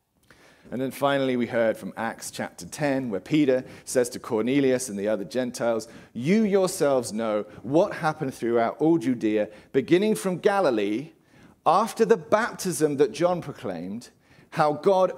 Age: 40-59